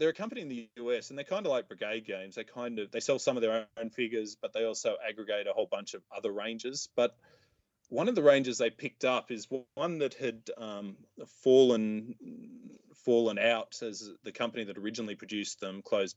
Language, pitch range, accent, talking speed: English, 105-125 Hz, Australian, 210 wpm